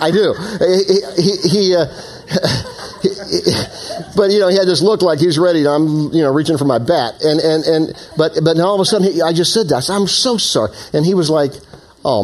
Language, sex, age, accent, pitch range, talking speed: English, male, 50-69, American, 115-185 Hz, 250 wpm